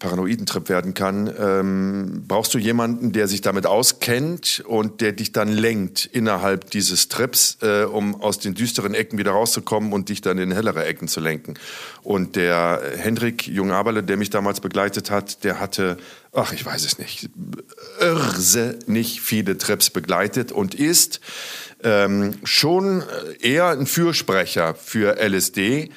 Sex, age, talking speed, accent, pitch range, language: male, 50-69, 150 wpm, German, 95-120 Hz, German